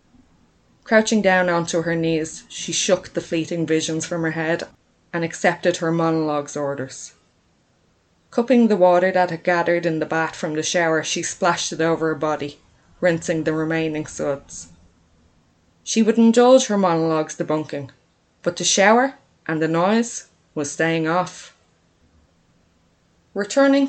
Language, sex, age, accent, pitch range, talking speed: English, female, 20-39, Irish, 160-195 Hz, 140 wpm